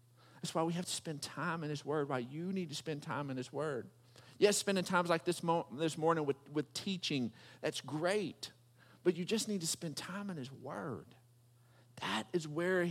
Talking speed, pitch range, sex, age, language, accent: 210 wpm, 130-195 Hz, male, 50-69, English, American